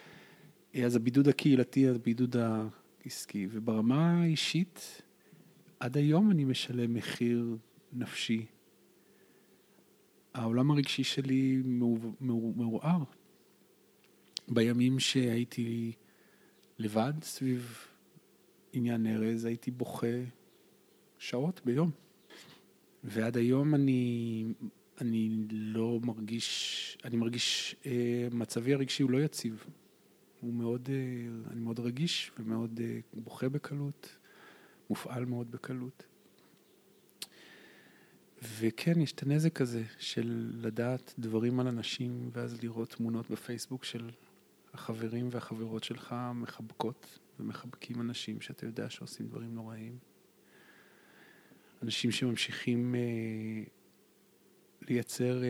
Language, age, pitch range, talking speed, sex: Hebrew, 40-59, 115-130 Hz, 90 wpm, male